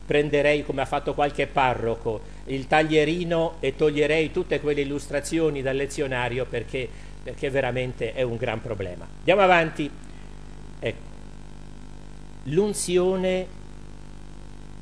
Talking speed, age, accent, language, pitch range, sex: 100 wpm, 50-69, native, Italian, 130-180 Hz, male